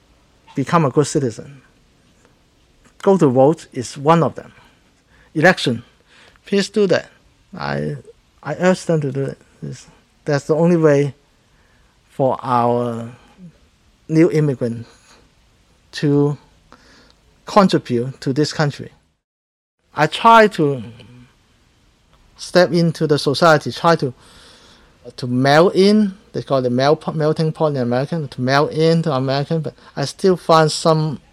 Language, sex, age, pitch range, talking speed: English, male, 50-69, 125-160 Hz, 125 wpm